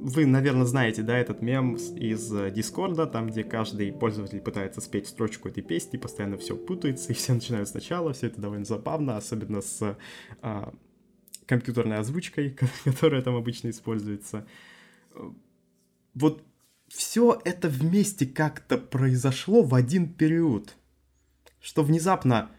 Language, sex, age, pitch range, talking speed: Russian, male, 20-39, 115-150 Hz, 130 wpm